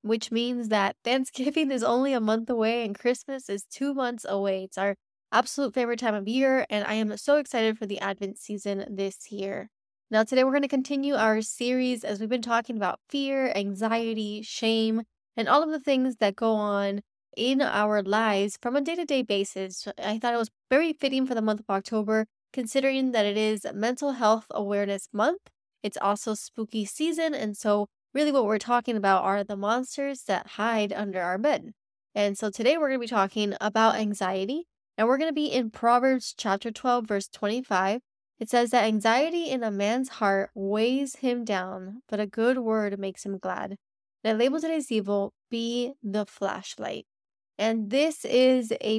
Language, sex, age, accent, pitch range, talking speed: English, female, 10-29, American, 205-255 Hz, 190 wpm